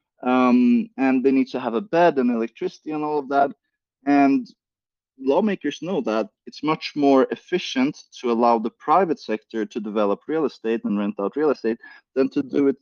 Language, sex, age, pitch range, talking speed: English, male, 30-49, 115-180 Hz, 185 wpm